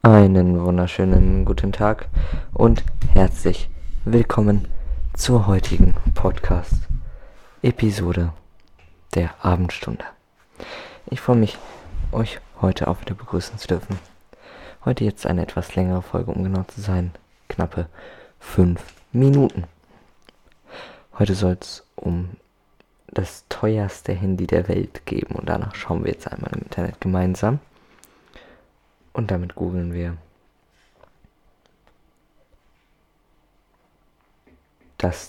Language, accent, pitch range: German, German, 85-100 Hz